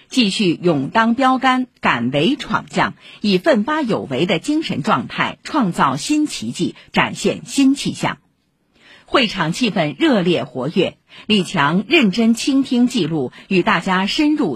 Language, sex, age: Chinese, female, 50-69